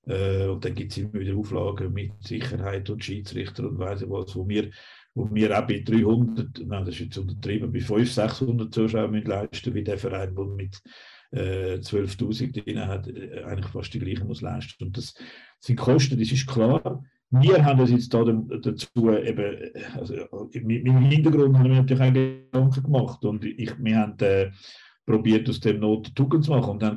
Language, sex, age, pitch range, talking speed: German, male, 50-69, 105-130 Hz, 180 wpm